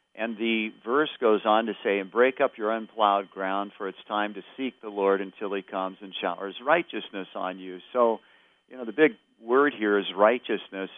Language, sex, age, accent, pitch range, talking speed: English, male, 50-69, American, 95-115 Hz, 200 wpm